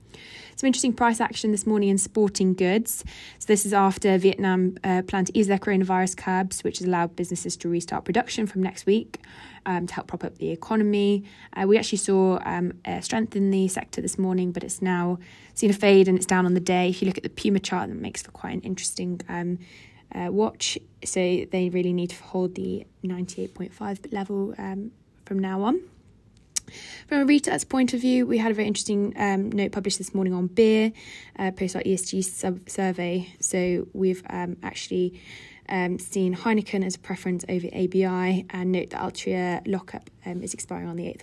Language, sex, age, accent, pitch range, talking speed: English, female, 20-39, British, 180-205 Hz, 200 wpm